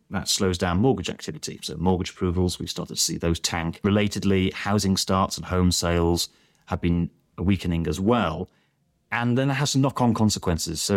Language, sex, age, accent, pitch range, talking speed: English, male, 30-49, British, 85-105 Hz, 185 wpm